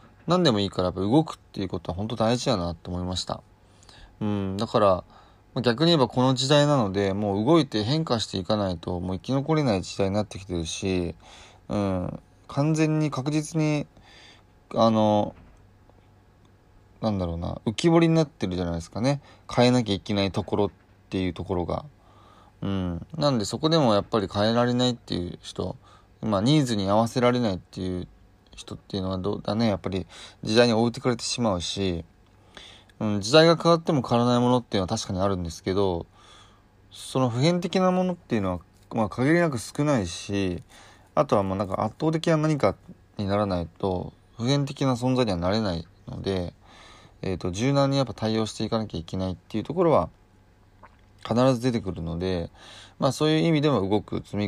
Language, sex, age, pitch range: Japanese, male, 20-39, 95-125 Hz